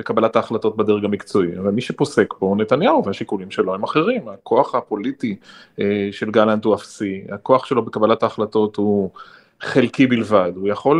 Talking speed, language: 160 wpm, Hebrew